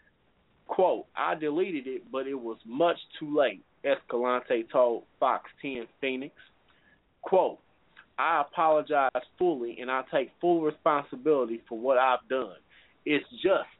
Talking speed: 130 wpm